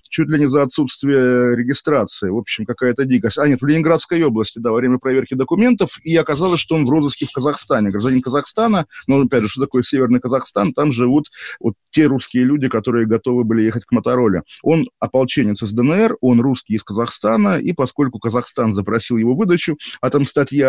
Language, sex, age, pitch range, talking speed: Russian, male, 20-39, 120-150 Hz, 190 wpm